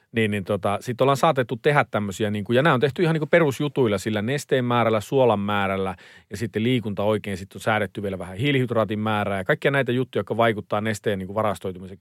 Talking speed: 205 wpm